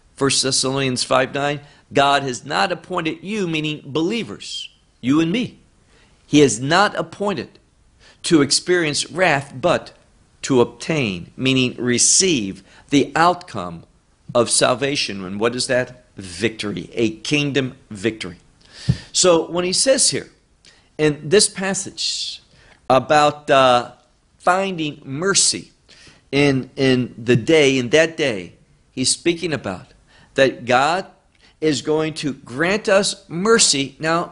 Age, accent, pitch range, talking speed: 50-69, American, 130-175 Hz, 120 wpm